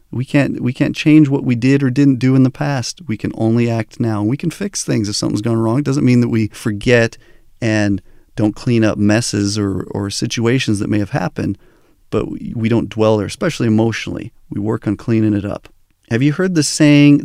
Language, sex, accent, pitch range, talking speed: English, male, American, 105-125 Hz, 220 wpm